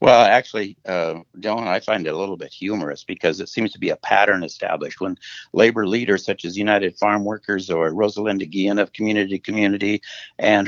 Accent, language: American, English